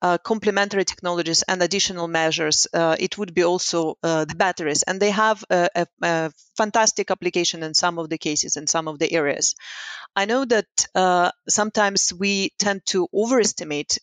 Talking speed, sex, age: 175 wpm, female, 30-49